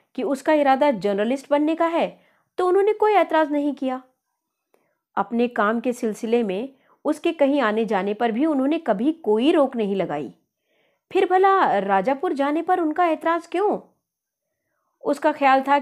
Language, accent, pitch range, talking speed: Hindi, native, 195-265 Hz, 155 wpm